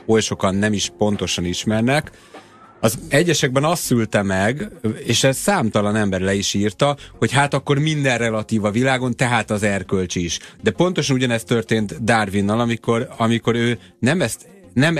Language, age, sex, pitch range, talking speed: Hungarian, 30-49, male, 95-120 Hz, 160 wpm